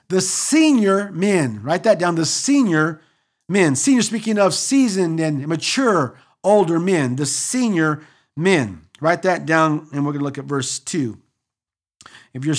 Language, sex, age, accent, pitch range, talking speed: English, male, 50-69, American, 135-195 Hz, 155 wpm